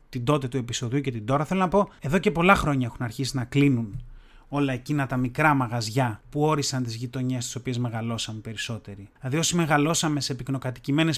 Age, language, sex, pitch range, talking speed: 30-49, Greek, male, 130-180 Hz, 195 wpm